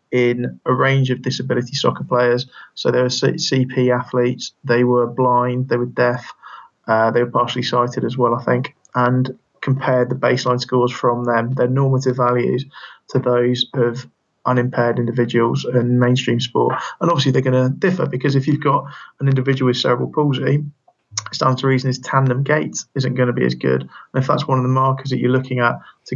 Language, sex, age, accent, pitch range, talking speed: English, male, 20-39, British, 125-135 Hz, 195 wpm